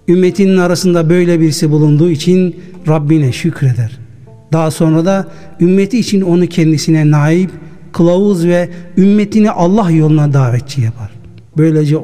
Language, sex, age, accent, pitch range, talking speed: Turkish, male, 60-79, native, 145-180 Hz, 120 wpm